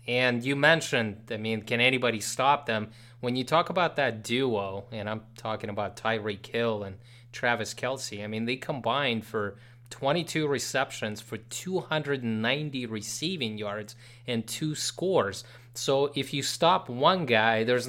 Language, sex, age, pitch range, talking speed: English, male, 30-49, 115-145 Hz, 150 wpm